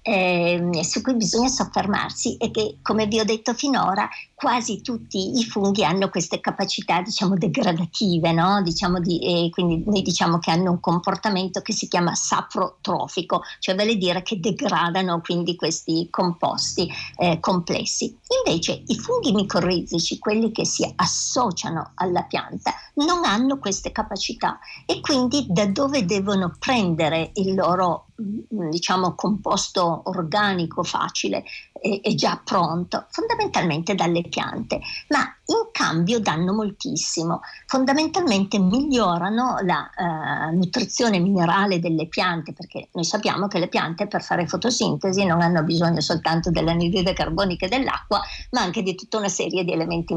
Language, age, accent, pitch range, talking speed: Italian, 50-69, native, 175-225 Hz, 140 wpm